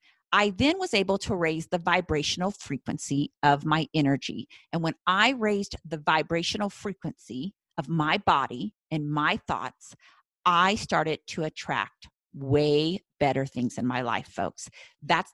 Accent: American